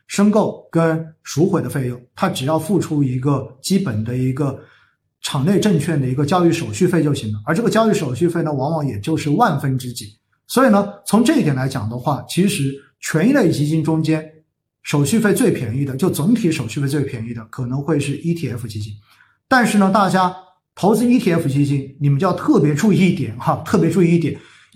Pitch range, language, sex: 140-195 Hz, Chinese, male